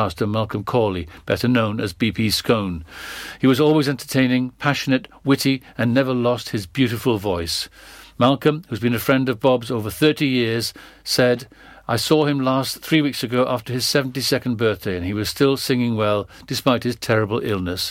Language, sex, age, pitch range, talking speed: English, male, 50-69, 115-145 Hz, 175 wpm